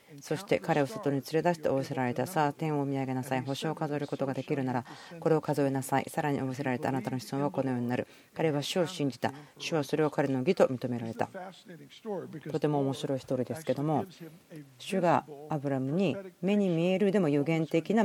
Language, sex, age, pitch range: Japanese, female, 40-59, 135-175 Hz